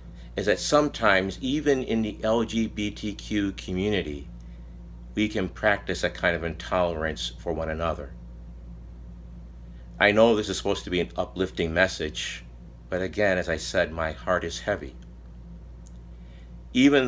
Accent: American